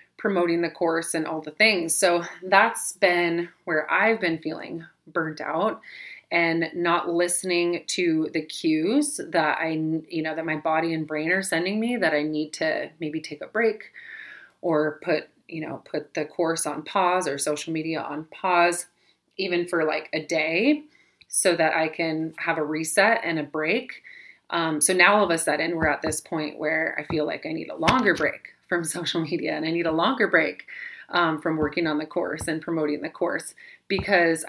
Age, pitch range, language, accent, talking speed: 30-49, 155-180 Hz, English, American, 195 wpm